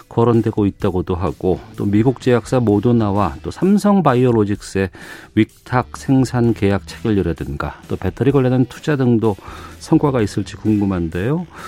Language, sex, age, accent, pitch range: Korean, male, 40-59, native, 95-150 Hz